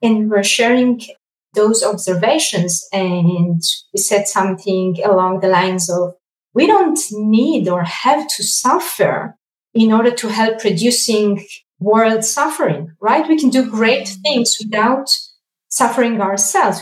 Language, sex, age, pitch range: English, female, 30-49, 200-245 Hz